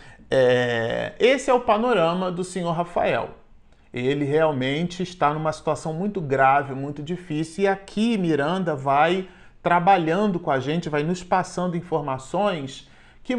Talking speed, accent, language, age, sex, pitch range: 135 wpm, Brazilian, Portuguese, 40-59, male, 135-180 Hz